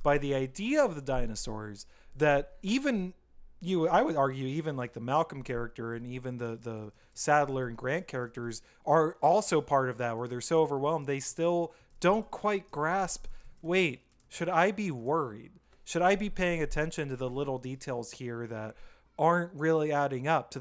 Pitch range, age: 130-175 Hz, 30-49